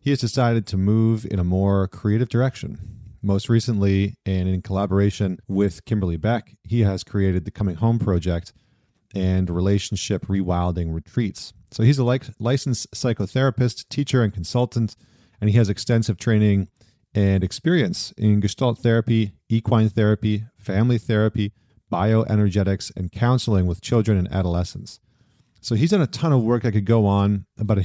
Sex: male